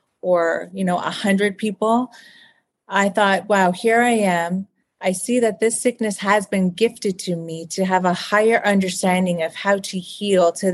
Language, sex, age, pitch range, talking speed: English, female, 30-49, 180-210 Hz, 180 wpm